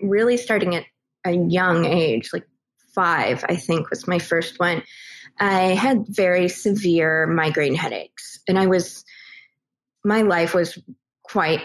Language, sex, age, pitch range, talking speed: English, female, 20-39, 170-195 Hz, 140 wpm